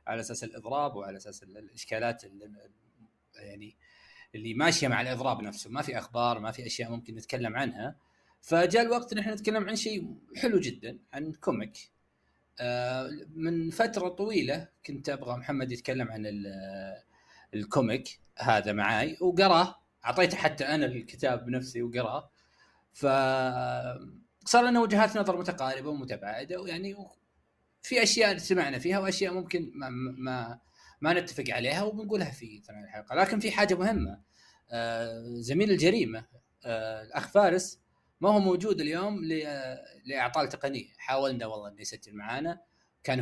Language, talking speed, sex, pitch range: Arabic, 130 wpm, male, 115-175 Hz